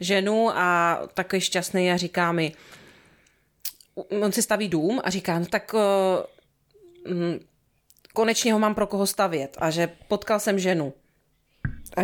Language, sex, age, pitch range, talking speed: Slovak, female, 30-49, 195-250 Hz, 145 wpm